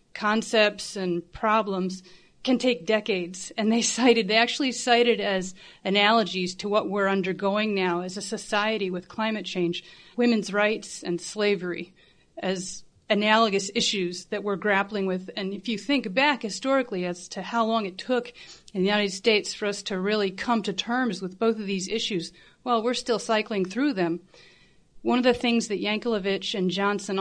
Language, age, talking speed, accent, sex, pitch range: English, 30-49, 175 wpm, American, female, 185-215 Hz